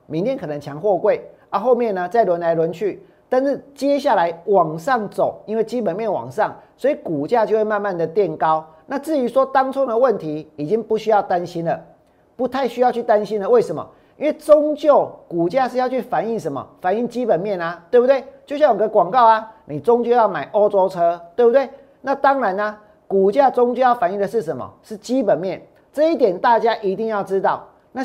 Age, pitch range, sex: 40-59, 190-265 Hz, male